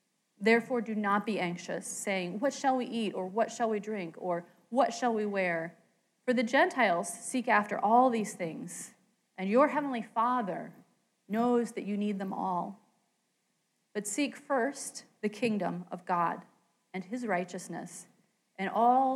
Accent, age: American, 30-49